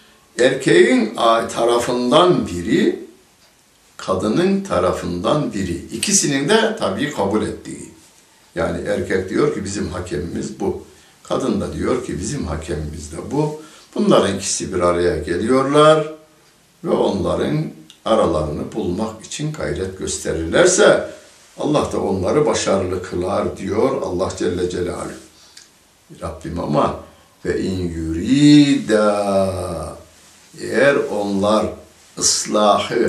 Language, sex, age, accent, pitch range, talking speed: Turkish, male, 60-79, native, 85-125 Hz, 100 wpm